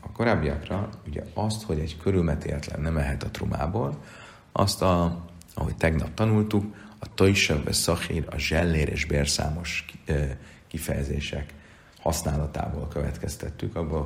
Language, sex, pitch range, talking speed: Hungarian, male, 75-100 Hz, 110 wpm